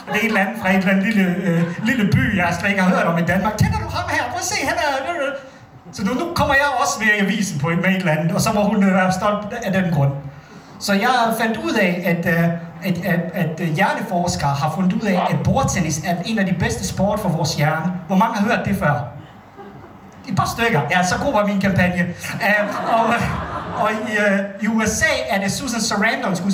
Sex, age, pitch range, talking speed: male, 30-49, 175-220 Hz, 250 wpm